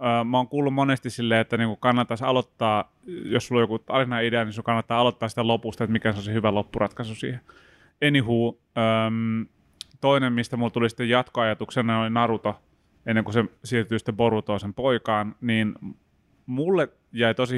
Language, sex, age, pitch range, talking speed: Finnish, male, 30-49, 110-120 Hz, 155 wpm